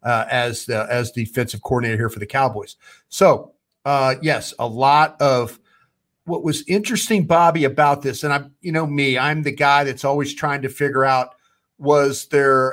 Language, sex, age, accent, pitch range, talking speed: English, male, 40-59, American, 125-145 Hz, 180 wpm